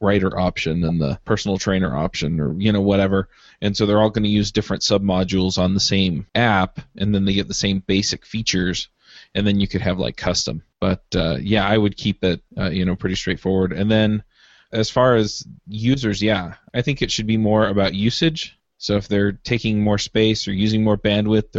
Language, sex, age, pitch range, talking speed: English, male, 20-39, 100-110 Hz, 215 wpm